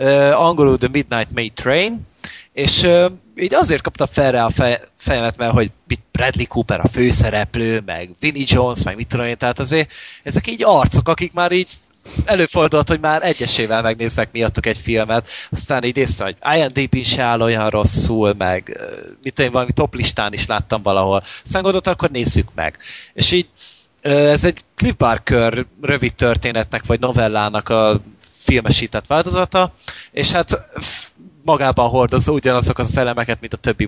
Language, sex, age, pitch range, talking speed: Hungarian, male, 30-49, 110-140 Hz, 160 wpm